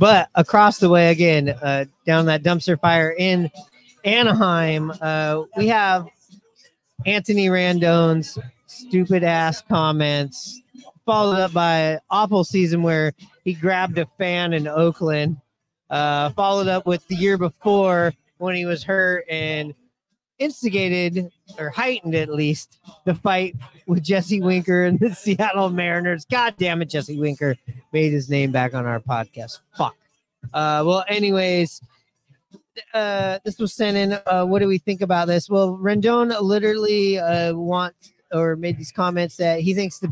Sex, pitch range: male, 155-195 Hz